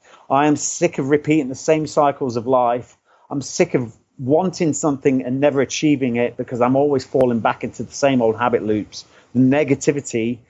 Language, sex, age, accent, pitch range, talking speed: English, male, 40-59, British, 125-155 Hz, 185 wpm